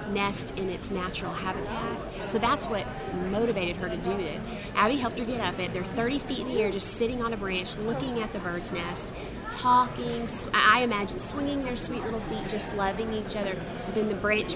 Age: 30-49